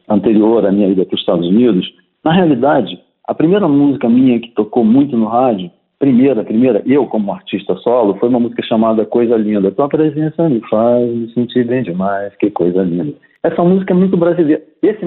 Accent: Brazilian